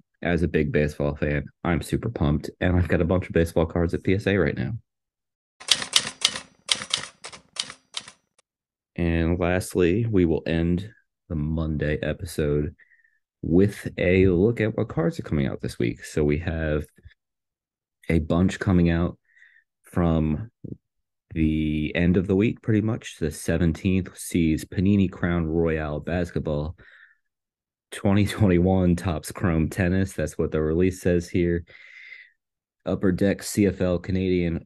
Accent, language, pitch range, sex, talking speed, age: American, English, 80-95 Hz, male, 130 wpm, 30-49